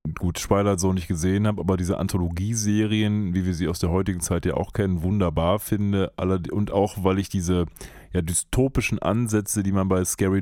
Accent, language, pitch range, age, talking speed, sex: German, German, 95-125 Hz, 30-49, 185 wpm, male